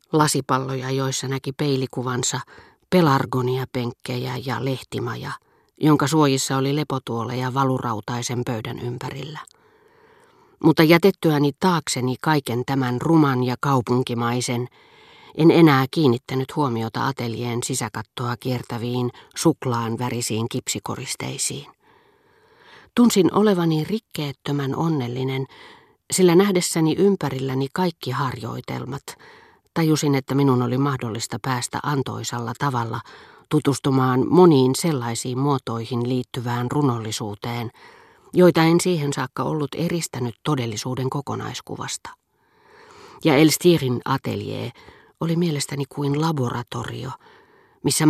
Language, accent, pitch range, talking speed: Finnish, native, 125-160 Hz, 90 wpm